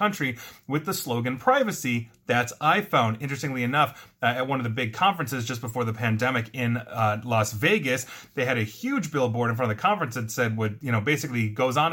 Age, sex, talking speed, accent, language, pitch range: 30-49, male, 210 wpm, American, English, 120-170 Hz